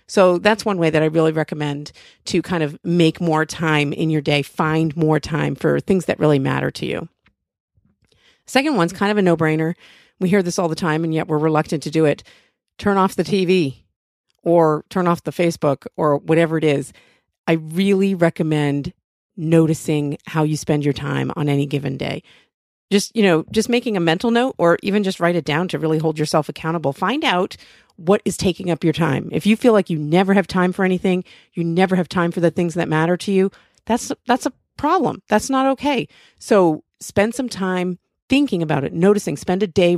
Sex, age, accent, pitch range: female, 40-59, American, 160-195 Hz